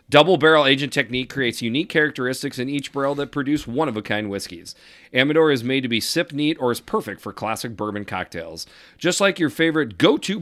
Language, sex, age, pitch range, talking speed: English, male, 40-59, 110-145 Hz, 190 wpm